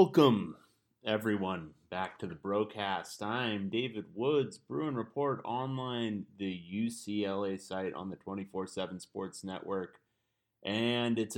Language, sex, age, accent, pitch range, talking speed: English, male, 30-49, American, 95-120 Hz, 115 wpm